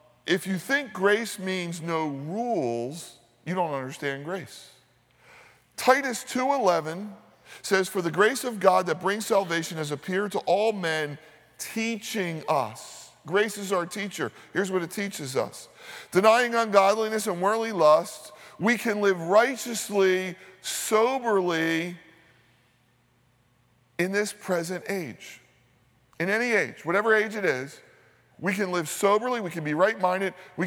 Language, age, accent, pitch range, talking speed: English, 50-69, American, 145-200 Hz, 135 wpm